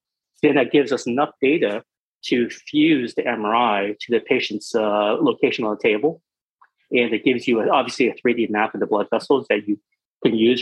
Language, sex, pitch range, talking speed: English, male, 110-140 Hz, 200 wpm